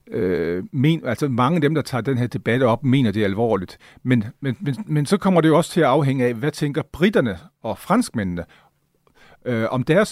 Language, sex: Danish, male